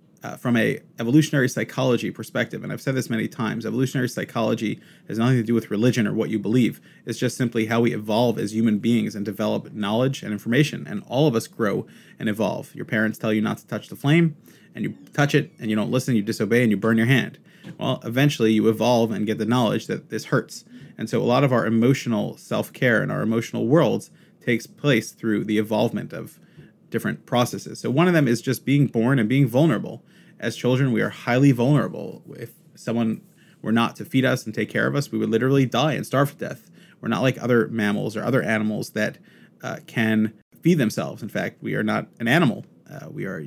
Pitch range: 110-135 Hz